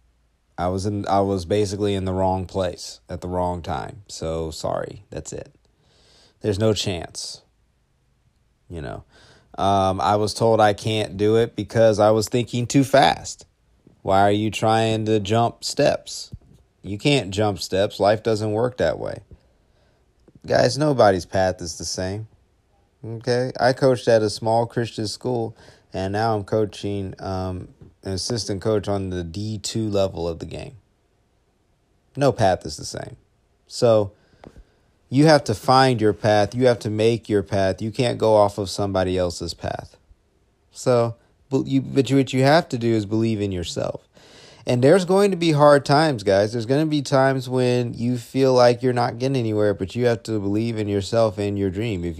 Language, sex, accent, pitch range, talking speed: English, male, American, 100-125 Hz, 175 wpm